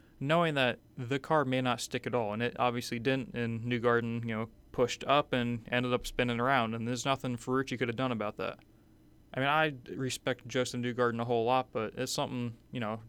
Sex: male